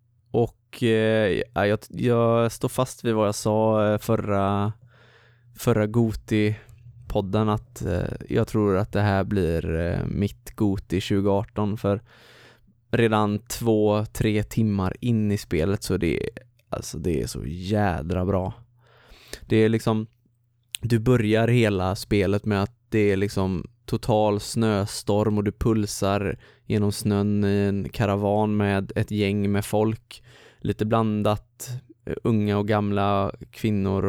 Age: 20-39